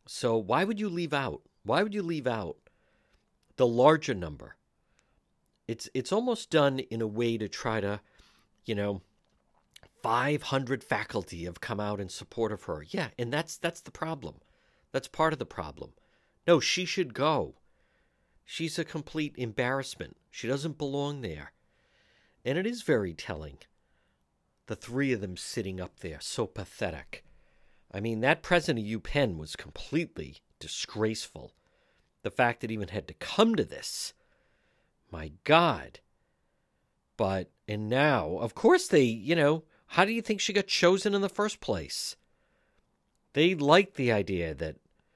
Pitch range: 105-160 Hz